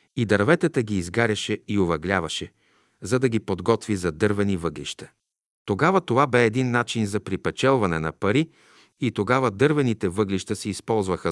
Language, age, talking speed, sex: Bulgarian, 50-69, 150 wpm, male